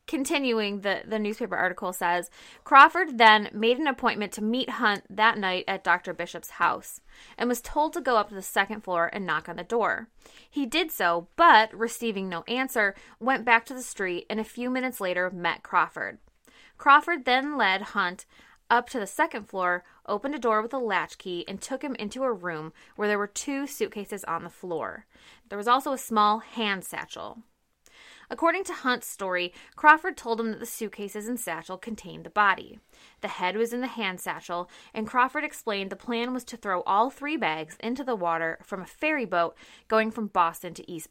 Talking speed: 200 wpm